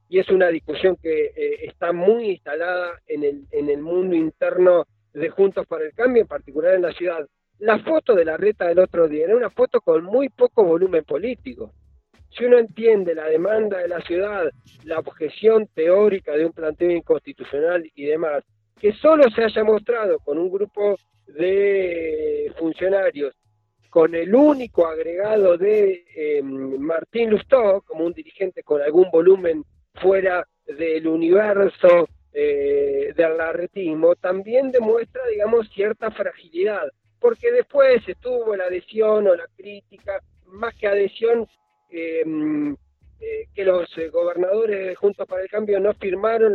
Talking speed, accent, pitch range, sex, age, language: 150 wpm, Argentinian, 165-240 Hz, male, 40-59, Spanish